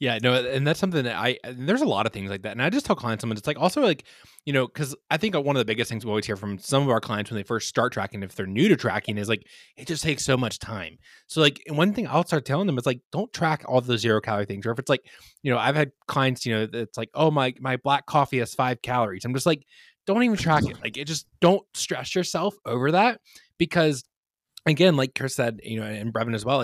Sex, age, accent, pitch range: male, 20-39, American, 115-160 Hz